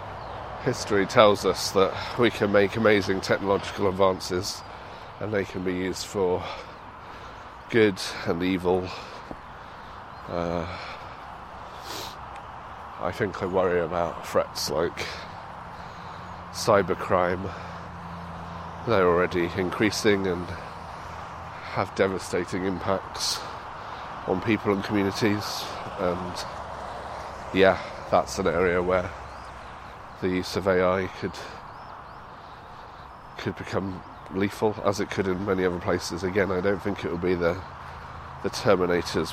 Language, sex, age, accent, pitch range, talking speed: English, male, 30-49, British, 85-100 Hz, 105 wpm